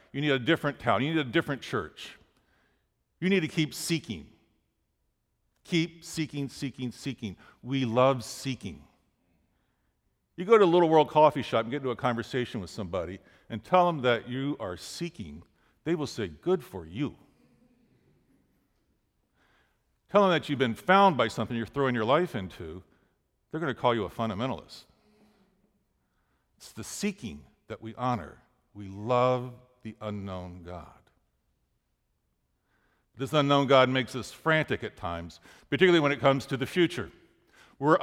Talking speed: 150 wpm